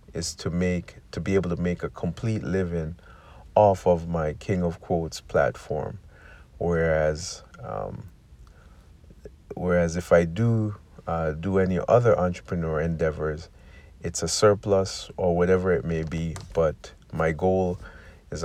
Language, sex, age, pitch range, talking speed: English, male, 50-69, 80-90 Hz, 135 wpm